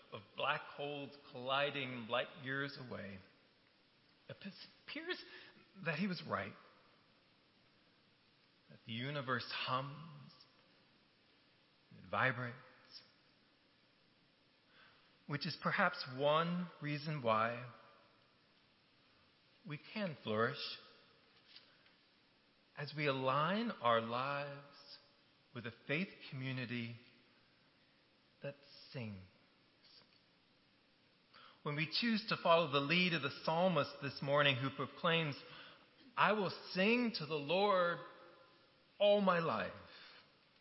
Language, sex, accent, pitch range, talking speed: English, male, American, 130-180 Hz, 90 wpm